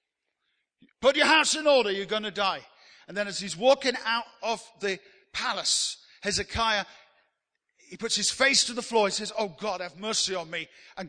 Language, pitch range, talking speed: English, 180-245 Hz, 190 wpm